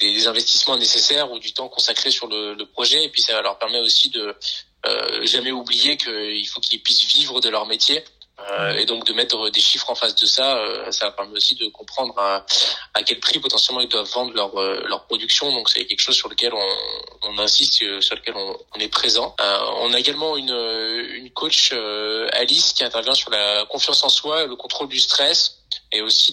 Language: French